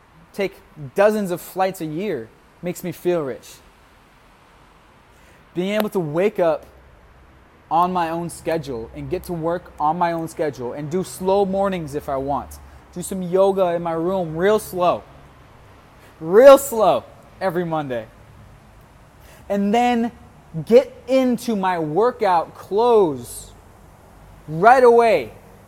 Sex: male